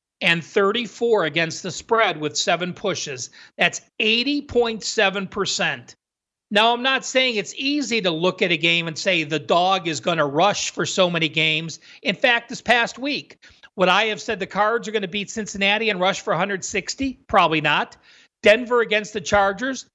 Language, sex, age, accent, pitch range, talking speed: English, male, 40-59, American, 180-235 Hz, 175 wpm